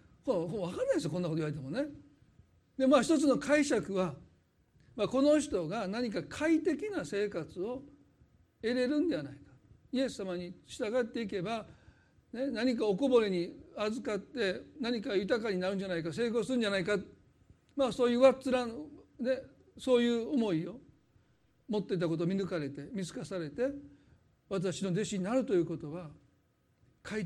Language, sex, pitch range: Japanese, male, 165-235 Hz